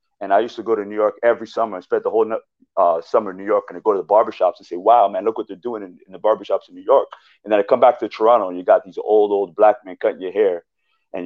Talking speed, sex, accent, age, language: 315 wpm, male, American, 30-49, English